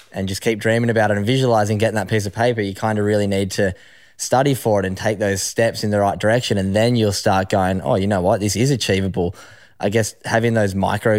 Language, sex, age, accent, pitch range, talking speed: English, male, 10-29, Australian, 100-115 Hz, 250 wpm